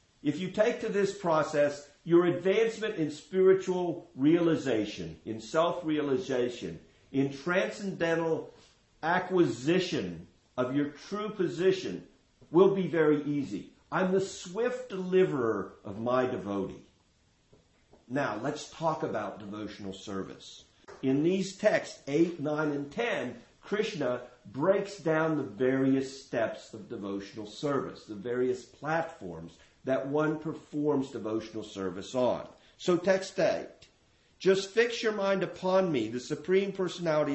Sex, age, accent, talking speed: male, 50-69, American, 120 wpm